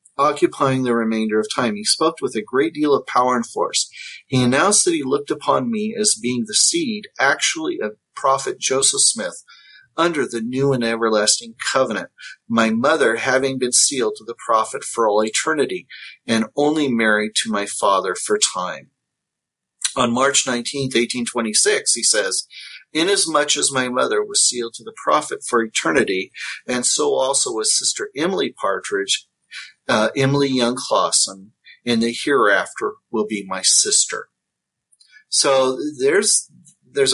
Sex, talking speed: male, 150 wpm